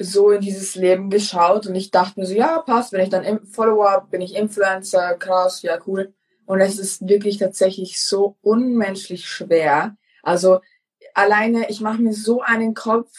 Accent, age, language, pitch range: German, 20-39, German, 180-210 Hz